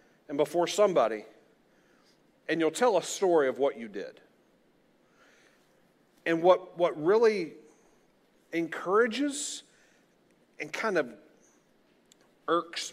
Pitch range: 165-220 Hz